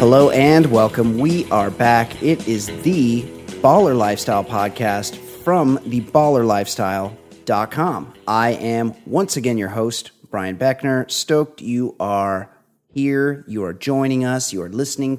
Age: 30-49